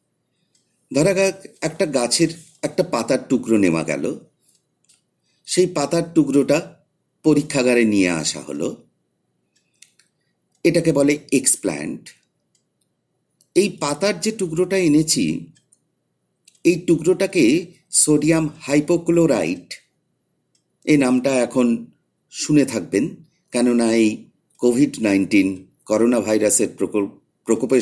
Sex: male